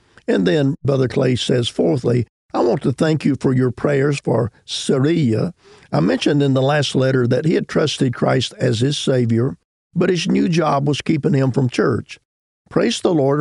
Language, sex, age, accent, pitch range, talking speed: English, male, 50-69, American, 125-150 Hz, 190 wpm